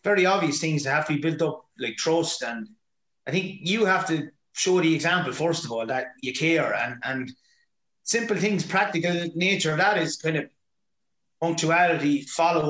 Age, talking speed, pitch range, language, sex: 30-49, 180 wpm, 145-180 Hz, English, male